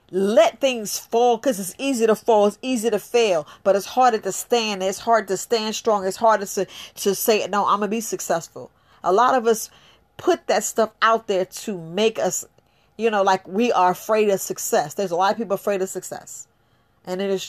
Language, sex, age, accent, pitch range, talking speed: English, female, 40-59, American, 195-260 Hz, 225 wpm